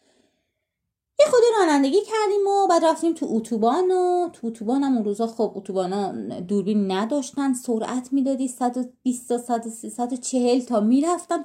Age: 30-49